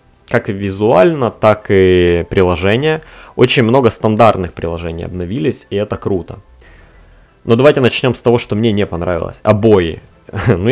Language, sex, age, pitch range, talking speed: Russian, male, 20-39, 95-120 Hz, 135 wpm